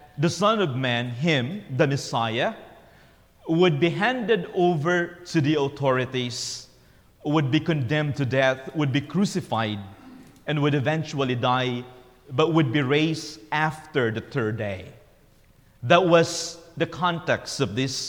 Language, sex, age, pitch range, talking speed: English, male, 40-59, 135-180 Hz, 135 wpm